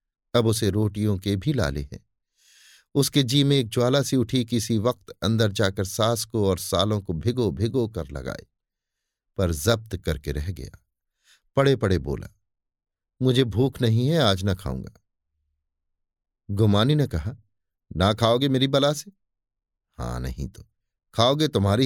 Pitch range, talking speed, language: 90-130 Hz, 150 wpm, Hindi